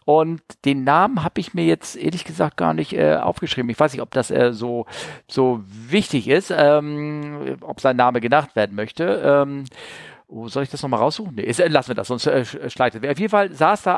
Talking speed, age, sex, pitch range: 230 wpm, 50-69, male, 130-180 Hz